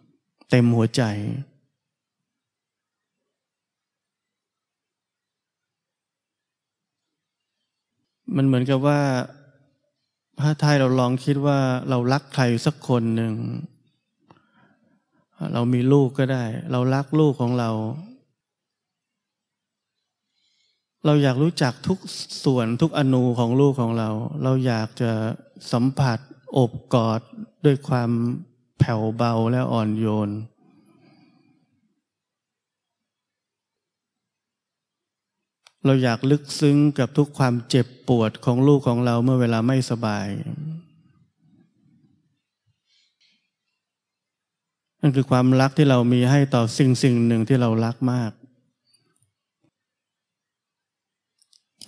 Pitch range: 120-145 Hz